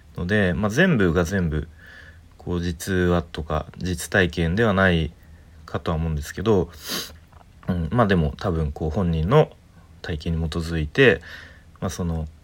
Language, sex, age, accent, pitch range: Japanese, male, 40-59, native, 80-95 Hz